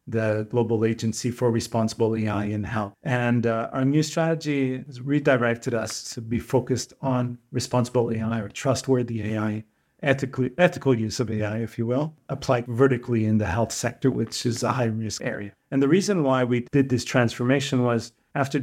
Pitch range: 115-135 Hz